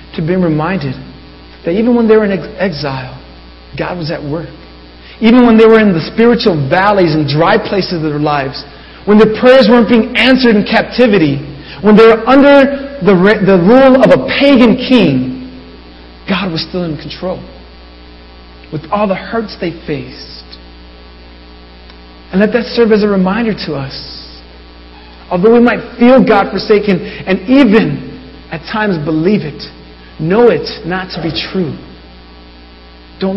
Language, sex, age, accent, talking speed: English, male, 40-59, American, 155 wpm